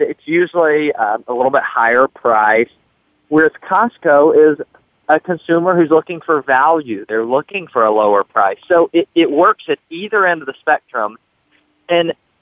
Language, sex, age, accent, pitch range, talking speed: English, male, 40-59, American, 135-200 Hz, 165 wpm